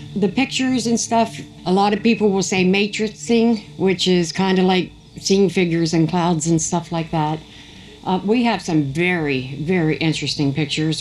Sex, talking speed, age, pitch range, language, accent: female, 175 wpm, 60-79, 150-180 Hz, English, American